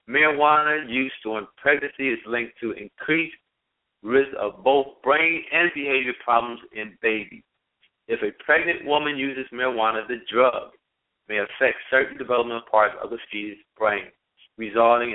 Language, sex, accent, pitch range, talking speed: English, male, American, 115-145 Hz, 140 wpm